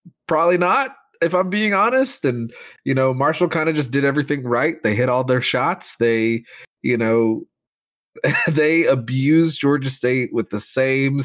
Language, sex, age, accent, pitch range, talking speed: English, male, 20-39, American, 110-160 Hz, 165 wpm